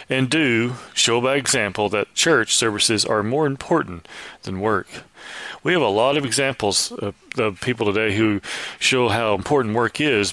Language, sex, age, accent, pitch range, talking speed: English, male, 40-59, American, 105-130 Hz, 165 wpm